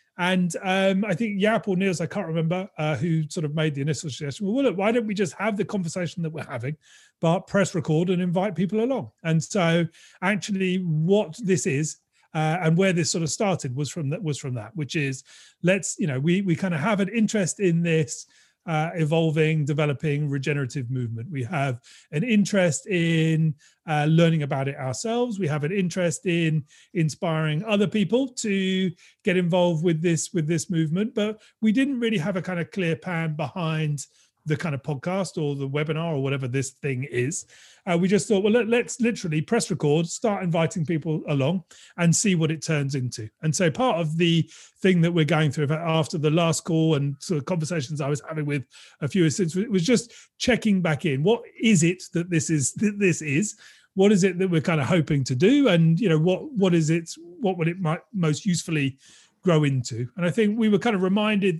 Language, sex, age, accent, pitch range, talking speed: English, male, 30-49, British, 155-195 Hz, 215 wpm